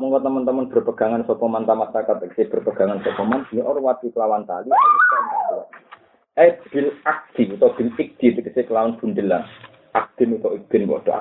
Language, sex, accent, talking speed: Indonesian, male, native, 80 wpm